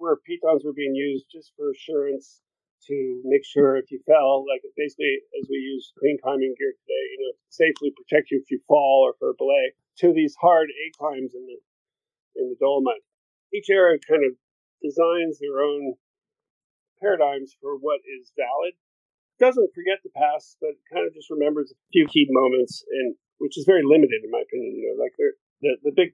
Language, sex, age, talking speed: English, male, 40-59, 195 wpm